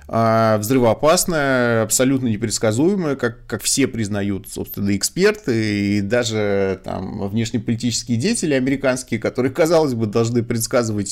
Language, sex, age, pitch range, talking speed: Russian, male, 30-49, 110-135 Hz, 110 wpm